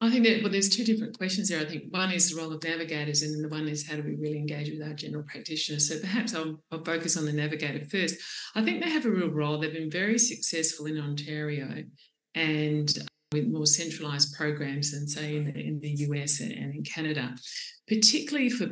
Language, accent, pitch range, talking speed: English, Australian, 150-195 Hz, 225 wpm